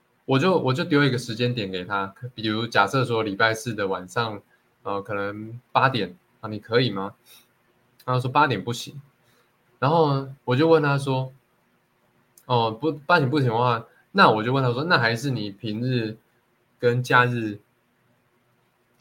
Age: 20-39